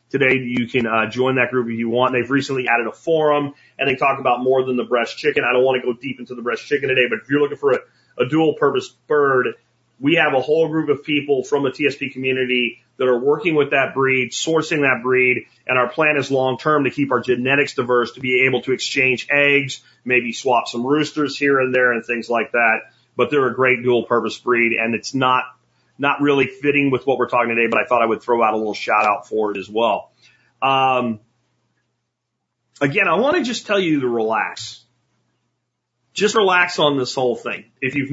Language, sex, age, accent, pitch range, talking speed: English, male, 30-49, American, 120-145 Hz, 220 wpm